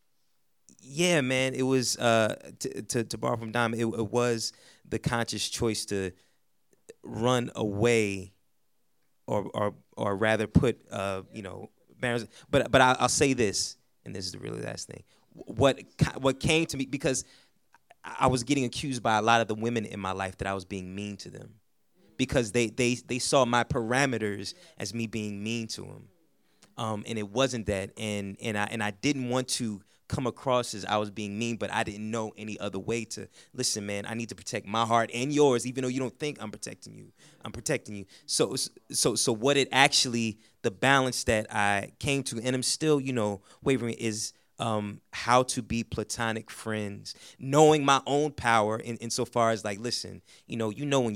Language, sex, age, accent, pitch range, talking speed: English, male, 30-49, American, 105-125 Hz, 200 wpm